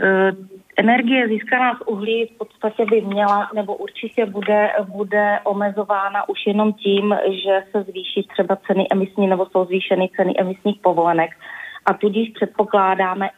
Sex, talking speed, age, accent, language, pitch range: female, 140 wpm, 30-49, native, Czech, 185-205 Hz